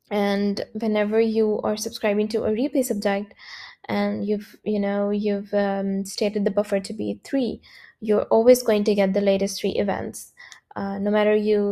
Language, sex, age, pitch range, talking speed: English, female, 10-29, 200-220 Hz, 175 wpm